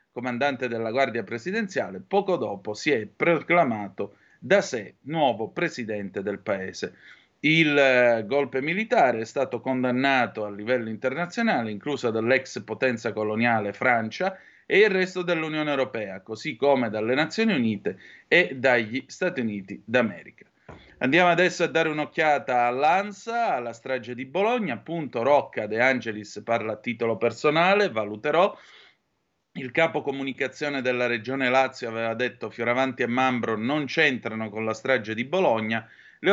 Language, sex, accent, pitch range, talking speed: Italian, male, native, 115-160 Hz, 135 wpm